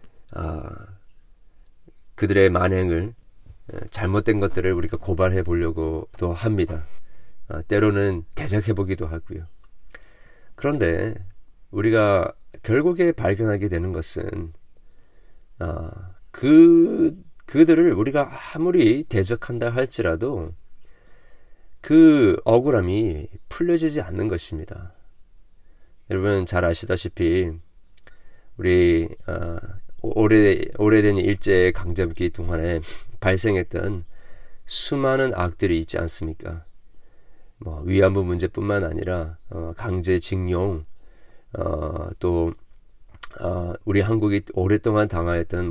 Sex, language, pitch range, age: male, Korean, 85-105 Hz, 40-59